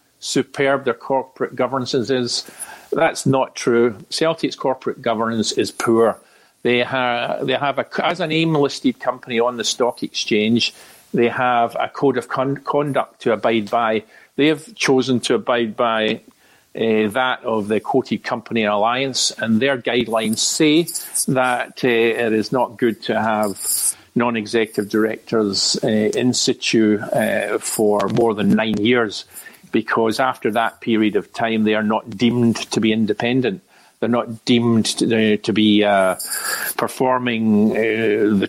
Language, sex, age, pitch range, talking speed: English, male, 50-69, 110-130 Hz, 150 wpm